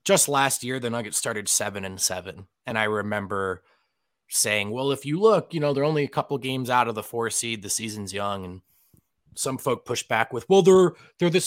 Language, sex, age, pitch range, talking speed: English, male, 20-39, 115-165 Hz, 220 wpm